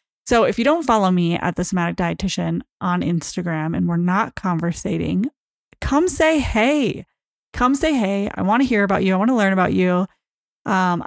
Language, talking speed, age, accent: English, 190 wpm, 30-49, American